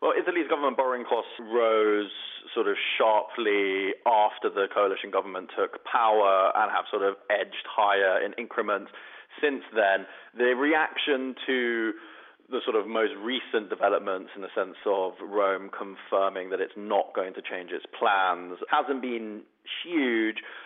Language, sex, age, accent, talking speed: English, male, 30-49, British, 150 wpm